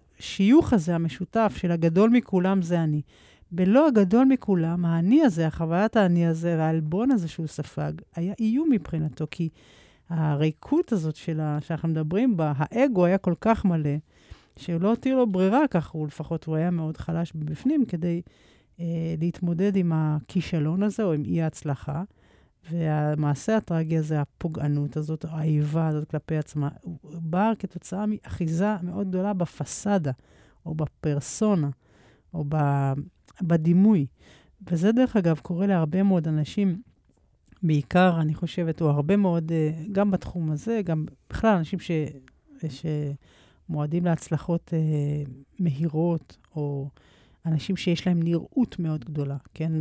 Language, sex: Hebrew, female